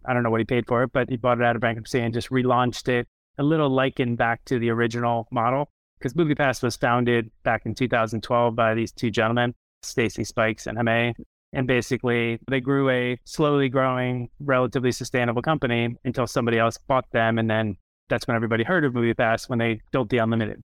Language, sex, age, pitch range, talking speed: English, male, 30-49, 120-135 Hz, 200 wpm